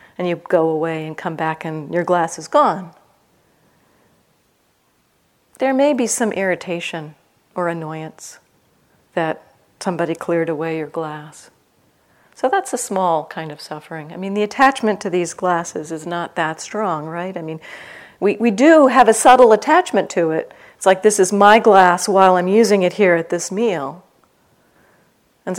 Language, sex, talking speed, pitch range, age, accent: English, female, 165 wpm, 160-205 Hz, 40-59, American